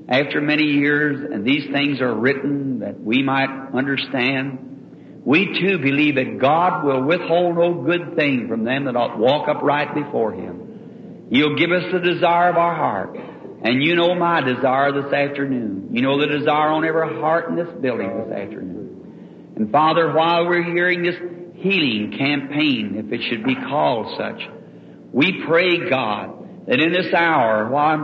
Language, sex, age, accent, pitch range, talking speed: English, male, 60-79, American, 135-185 Hz, 170 wpm